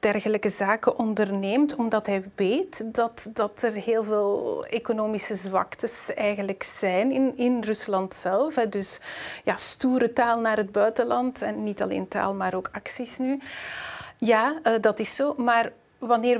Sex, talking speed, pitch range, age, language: female, 145 wpm, 200-240 Hz, 30-49, Dutch